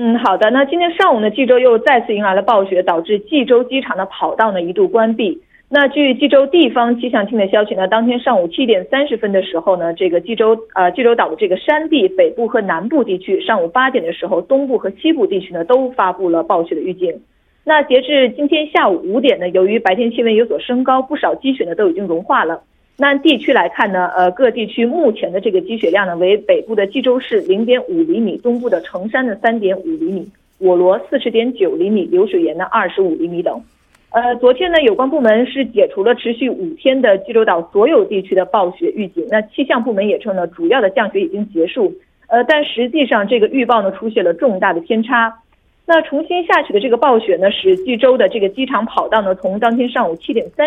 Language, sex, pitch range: Korean, female, 200-295 Hz